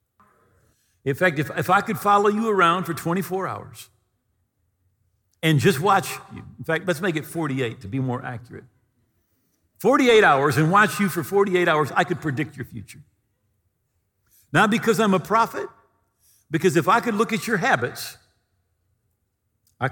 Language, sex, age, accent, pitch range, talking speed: English, male, 50-69, American, 120-185 Hz, 160 wpm